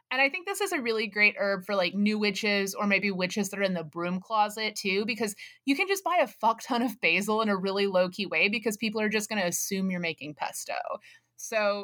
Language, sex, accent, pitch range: English, female, American, 180-220 Hz